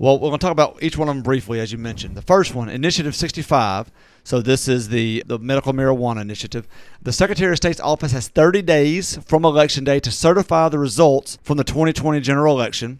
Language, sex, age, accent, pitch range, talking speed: English, male, 40-59, American, 130-160 Hz, 215 wpm